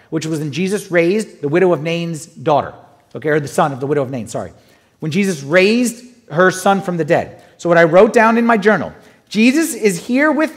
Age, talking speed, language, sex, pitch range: 30-49, 225 wpm, English, male, 175-255 Hz